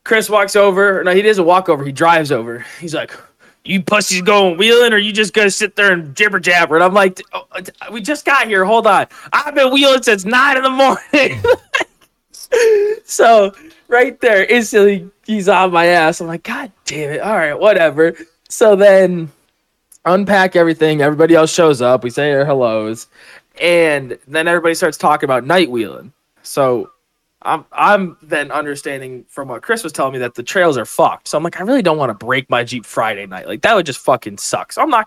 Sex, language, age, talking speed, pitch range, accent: male, English, 20-39, 205 wpm, 140-210 Hz, American